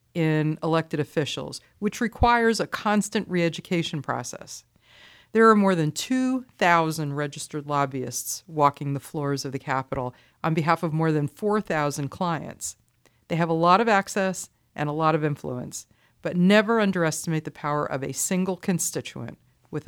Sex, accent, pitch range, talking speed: female, American, 140-190 Hz, 150 wpm